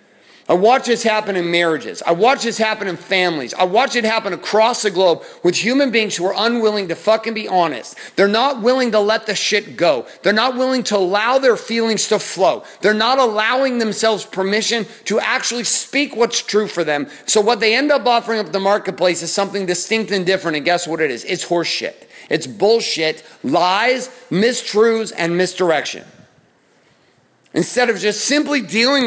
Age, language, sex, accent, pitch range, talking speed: 40-59, English, male, American, 200-250 Hz, 185 wpm